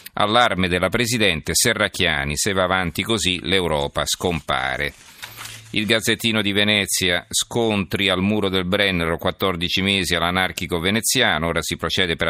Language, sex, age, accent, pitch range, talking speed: Italian, male, 50-69, native, 80-95 Hz, 130 wpm